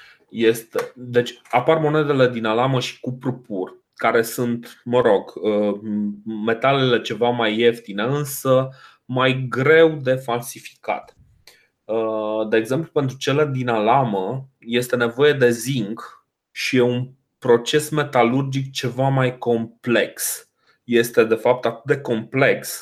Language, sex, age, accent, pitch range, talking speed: Romanian, male, 20-39, native, 115-150 Hz, 115 wpm